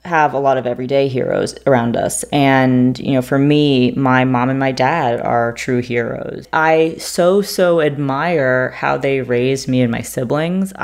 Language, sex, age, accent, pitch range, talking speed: English, female, 20-39, American, 125-145 Hz, 175 wpm